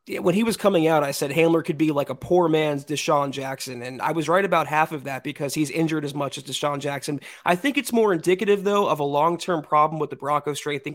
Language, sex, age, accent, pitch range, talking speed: English, male, 20-39, American, 155-205 Hz, 260 wpm